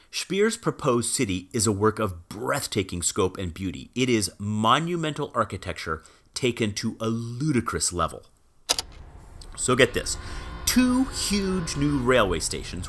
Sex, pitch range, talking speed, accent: male, 90-120 Hz, 130 wpm, American